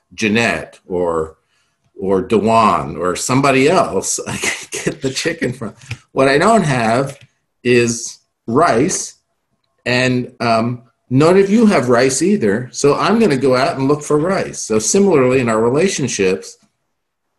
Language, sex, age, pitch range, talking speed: English, male, 50-69, 110-140 Hz, 140 wpm